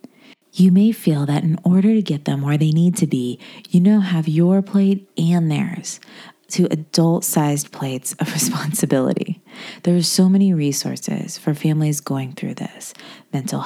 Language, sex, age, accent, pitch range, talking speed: English, female, 30-49, American, 155-205 Hz, 165 wpm